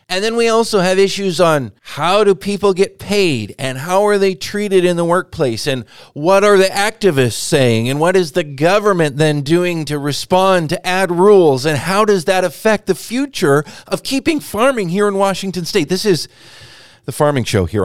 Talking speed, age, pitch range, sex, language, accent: 195 wpm, 40-59, 145-190 Hz, male, English, American